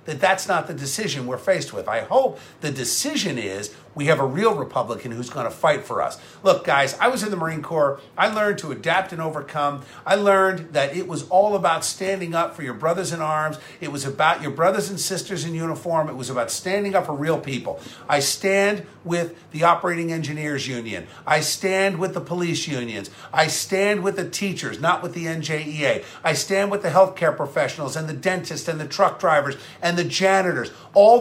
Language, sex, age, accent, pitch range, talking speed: English, male, 50-69, American, 140-185 Hz, 205 wpm